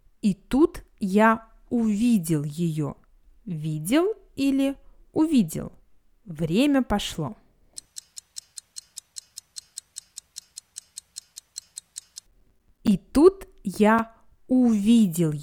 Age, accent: 20-39, native